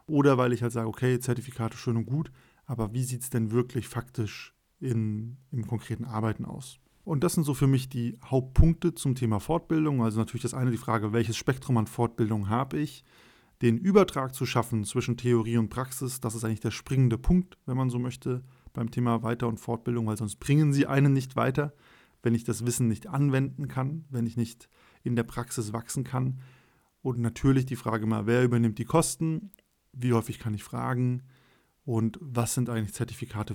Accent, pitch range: German, 115-135 Hz